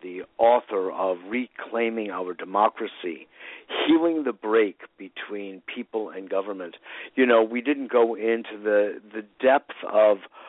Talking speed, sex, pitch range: 130 wpm, male, 100-135 Hz